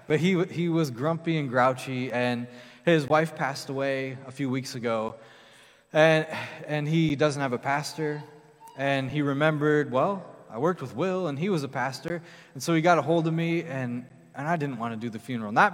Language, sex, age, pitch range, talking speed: English, male, 20-39, 135-180 Hz, 205 wpm